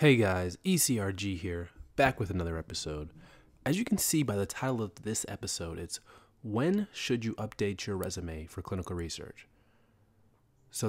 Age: 30-49